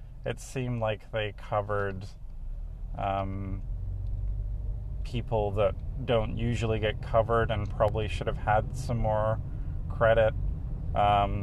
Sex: male